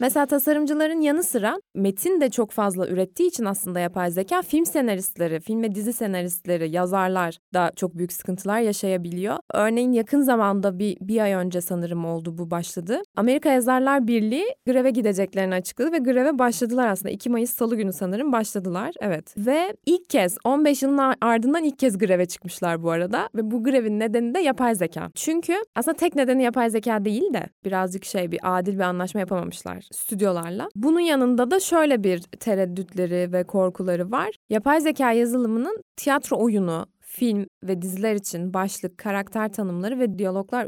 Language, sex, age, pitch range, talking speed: Turkish, female, 20-39, 185-255 Hz, 165 wpm